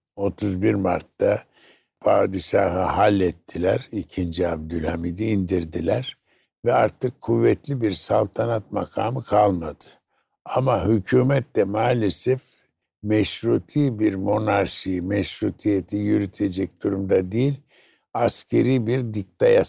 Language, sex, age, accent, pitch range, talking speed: Turkish, male, 60-79, native, 90-125 Hz, 85 wpm